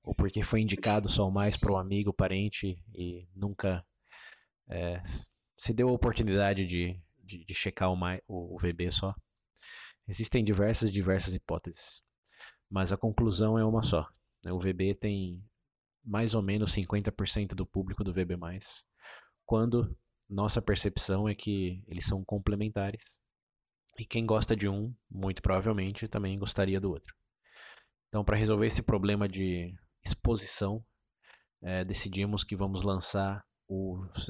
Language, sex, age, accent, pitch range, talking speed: Portuguese, male, 20-39, Brazilian, 90-105 Hz, 140 wpm